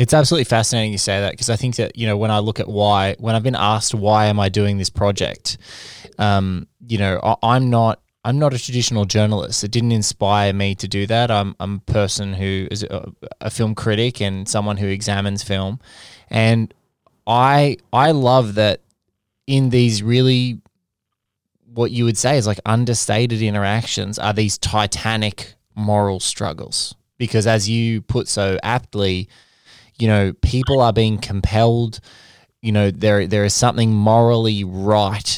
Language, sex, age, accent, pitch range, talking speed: English, male, 20-39, Australian, 100-115 Hz, 170 wpm